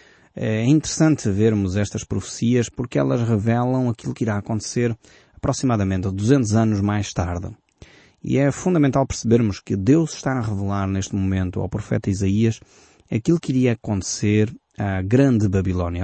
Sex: male